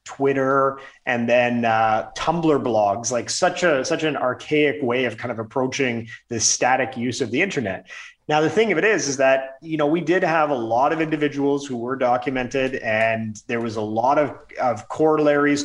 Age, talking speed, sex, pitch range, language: 30-49, 195 wpm, male, 120-145 Hz, English